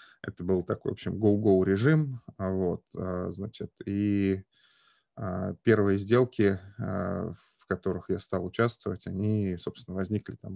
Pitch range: 95-105 Hz